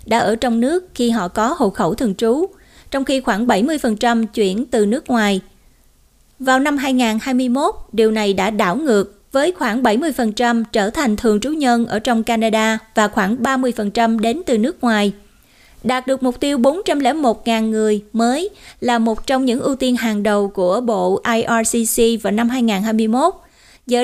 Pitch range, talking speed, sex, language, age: 220-255 Hz, 165 wpm, female, Vietnamese, 20-39